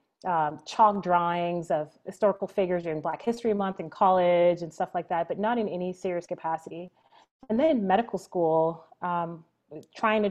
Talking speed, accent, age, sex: 170 wpm, American, 30-49, female